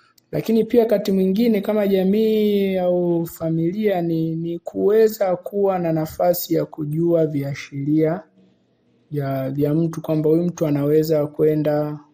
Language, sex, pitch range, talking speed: Swahili, male, 145-165 Hz, 125 wpm